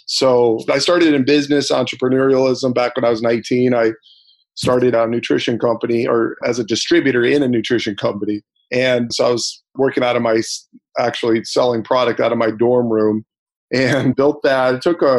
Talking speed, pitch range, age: 180 wpm, 115-130 Hz, 40-59